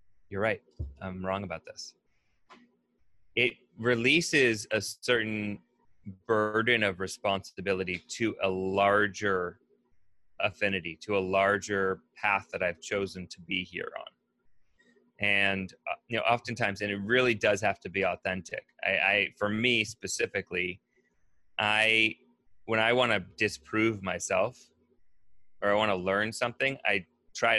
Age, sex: 30-49, male